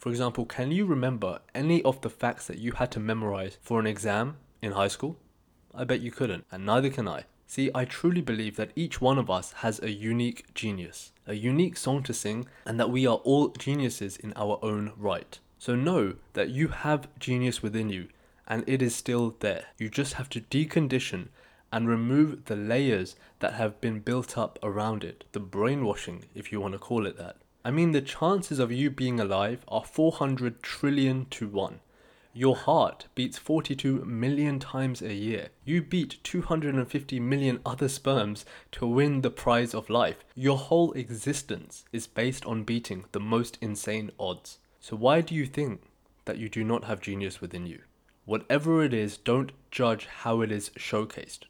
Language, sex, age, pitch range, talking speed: English, male, 20-39, 110-135 Hz, 185 wpm